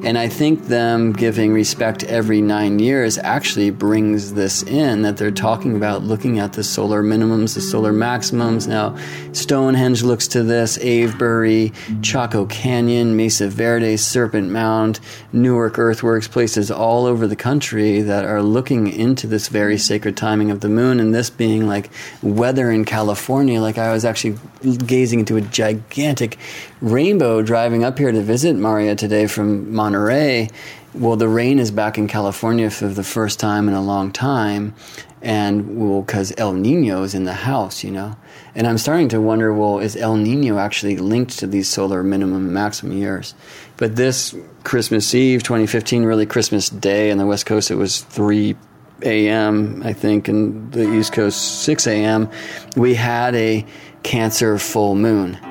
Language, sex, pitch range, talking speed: English, male, 105-115 Hz, 165 wpm